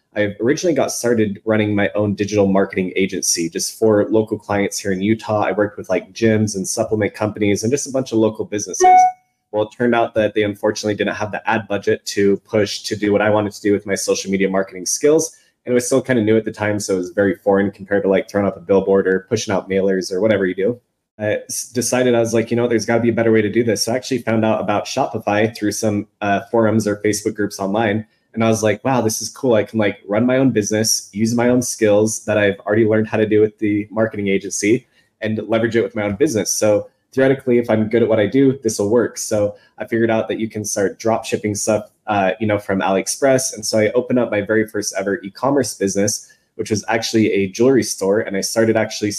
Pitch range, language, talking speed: 100-115 Hz, English, 250 wpm